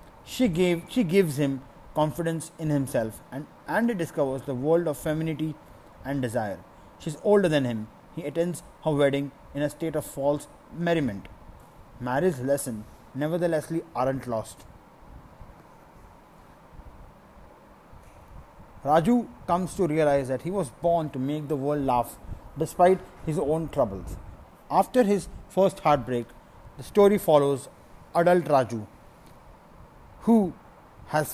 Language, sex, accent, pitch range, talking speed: Hindi, male, native, 125-175 Hz, 125 wpm